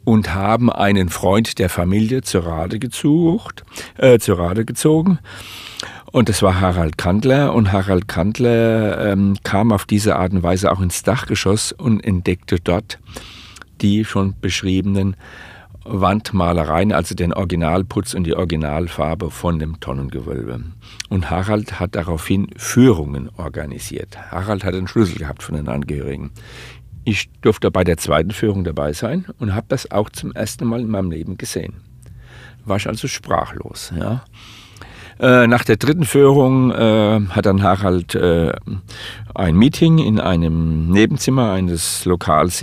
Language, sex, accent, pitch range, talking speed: German, male, German, 90-115 Hz, 130 wpm